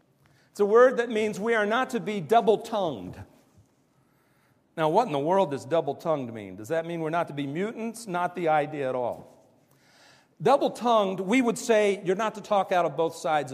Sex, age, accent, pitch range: male, 50-69, American, 155-215 Hz